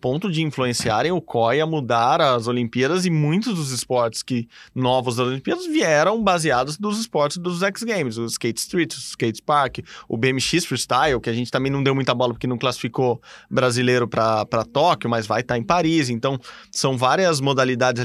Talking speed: 190 wpm